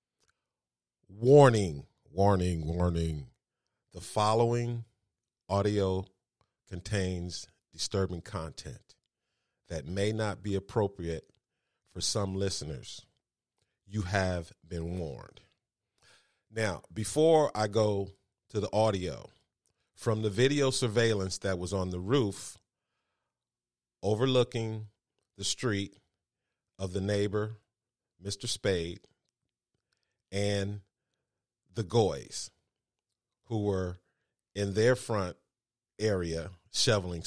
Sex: male